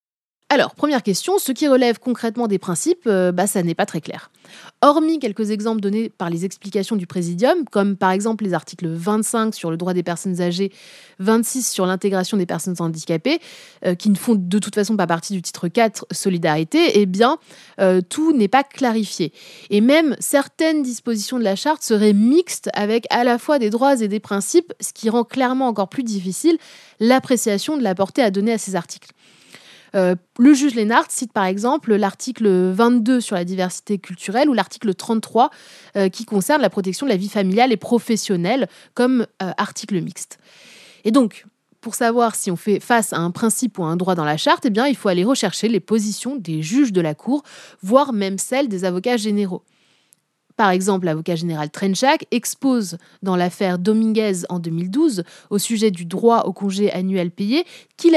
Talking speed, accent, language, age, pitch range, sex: 190 wpm, French, French, 20-39, 185-245 Hz, female